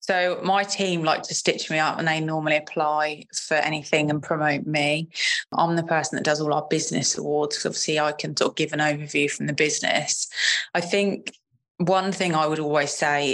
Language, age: English, 20-39